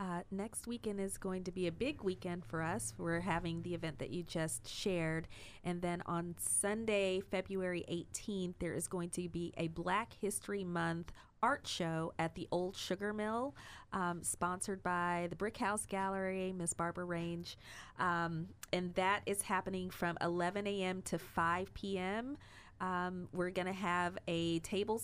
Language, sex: English, female